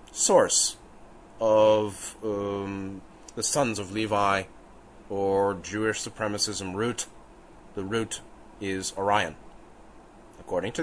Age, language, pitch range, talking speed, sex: 30-49, English, 110-145 Hz, 95 wpm, male